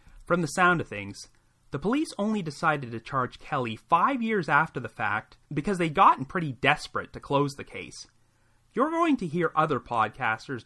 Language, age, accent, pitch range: English, 30-49, American, 120-180 Hz